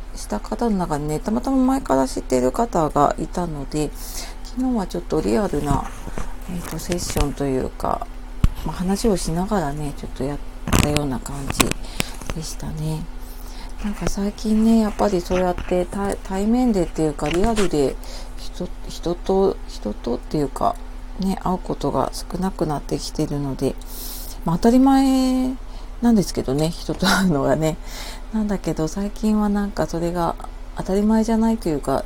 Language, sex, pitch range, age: Japanese, female, 155-205 Hz, 40-59